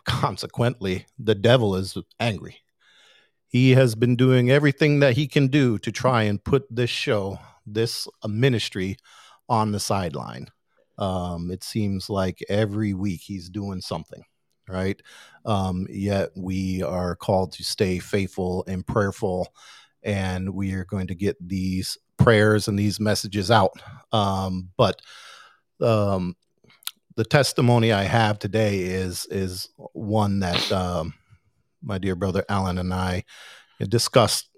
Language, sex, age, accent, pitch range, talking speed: English, male, 40-59, American, 95-115 Hz, 135 wpm